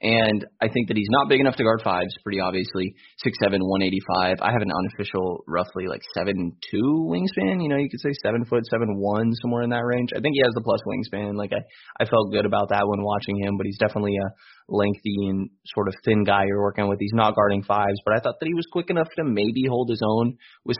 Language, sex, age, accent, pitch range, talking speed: English, male, 20-39, American, 95-115 Hz, 250 wpm